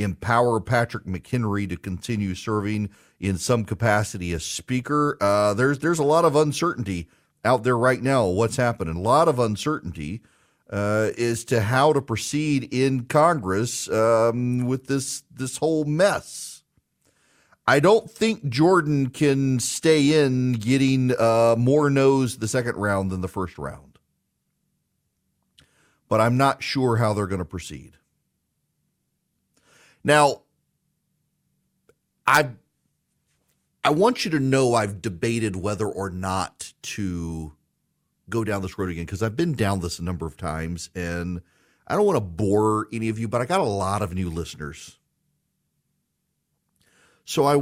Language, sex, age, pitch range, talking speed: English, male, 40-59, 100-135 Hz, 145 wpm